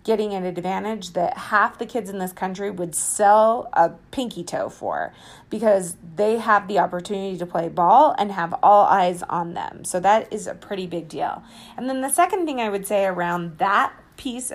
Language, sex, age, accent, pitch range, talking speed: English, female, 30-49, American, 185-230 Hz, 200 wpm